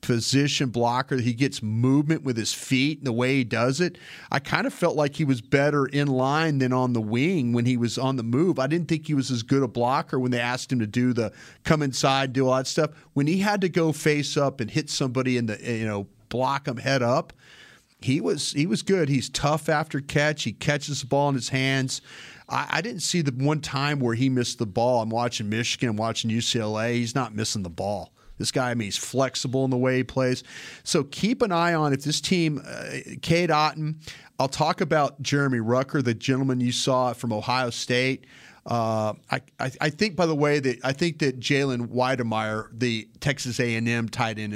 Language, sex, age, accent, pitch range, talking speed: English, male, 40-59, American, 120-145 Hz, 225 wpm